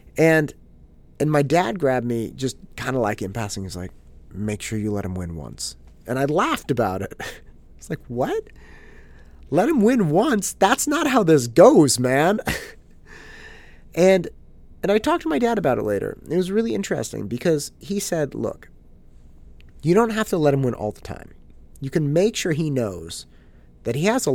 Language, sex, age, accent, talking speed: English, male, 30-49, American, 190 wpm